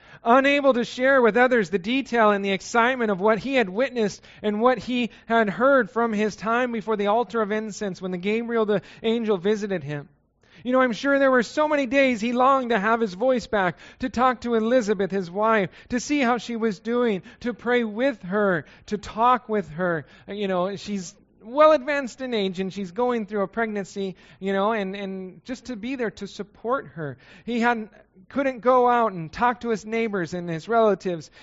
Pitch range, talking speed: 160-235 Hz, 205 wpm